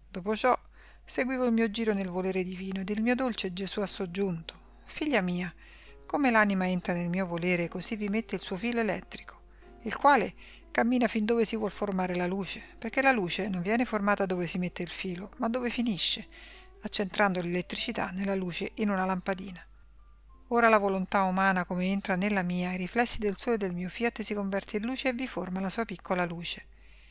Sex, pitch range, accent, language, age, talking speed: female, 180-225 Hz, native, Italian, 50-69, 195 wpm